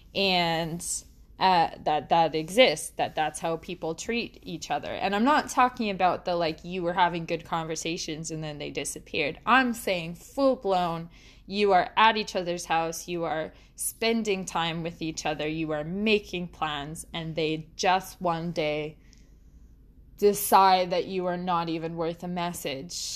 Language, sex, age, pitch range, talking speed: English, female, 20-39, 165-205 Hz, 160 wpm